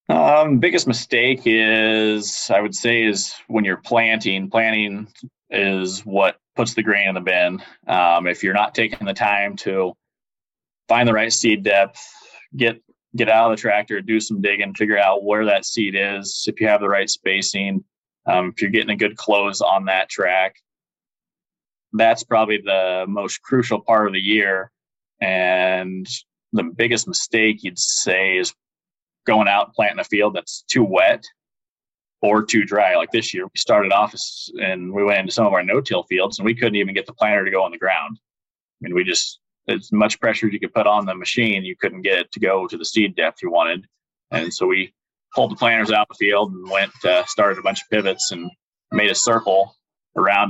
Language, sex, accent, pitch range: English, male, American, 95-115 Hz